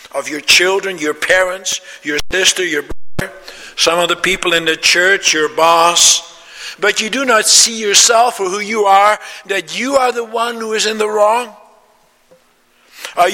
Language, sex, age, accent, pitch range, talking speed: English, male, 60-79, American, 150-215 Hz, 175 wpm